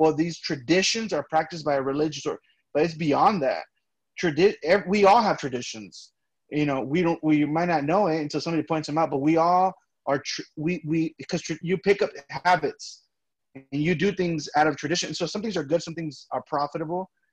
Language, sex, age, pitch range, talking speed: English, male, 30-49, 140-175 Hz, 215 wpm